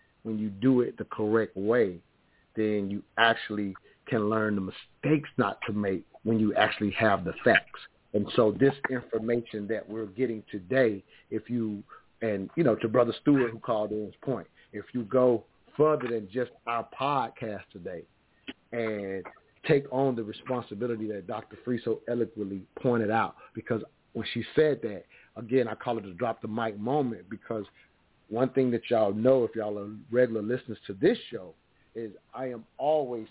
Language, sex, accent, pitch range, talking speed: English, male, American, 110-130 Hz, 175 wpm